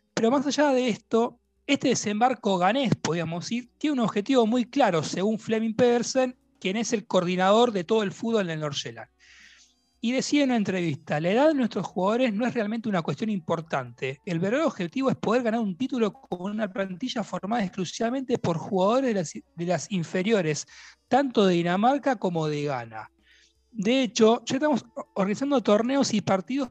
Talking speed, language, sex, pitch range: 175 wpm, Spanish, male, 185-245 Hz